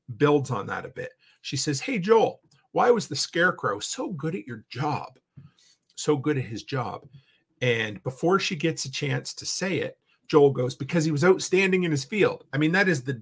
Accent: American